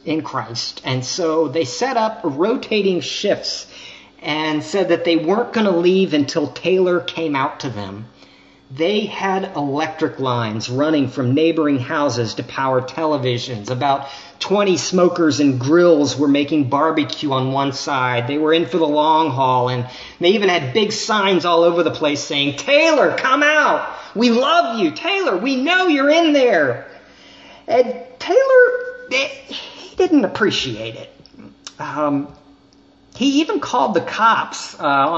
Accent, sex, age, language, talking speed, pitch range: American, male, 40-59, English, 150 wpm, 145-200 Hz